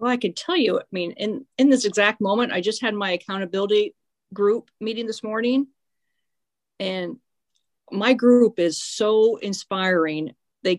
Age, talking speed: 40-59, 155 wpm